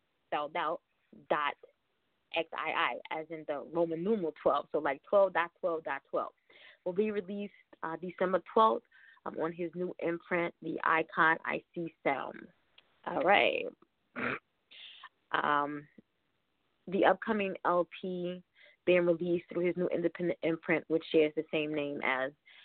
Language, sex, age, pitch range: English, female, 20-39, 155-180 Hz